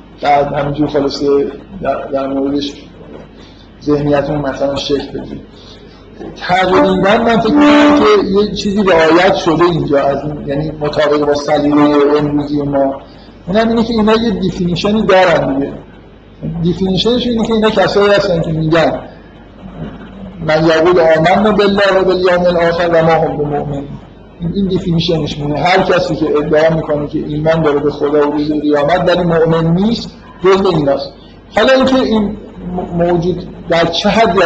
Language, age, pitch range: Persian, 50-69, 150-190 Hz